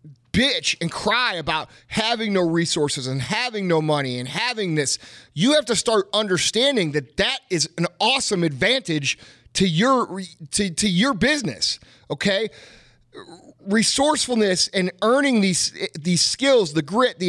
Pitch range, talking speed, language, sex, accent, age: 175-245 Hz, 140 wpm, English, male, American, 30-49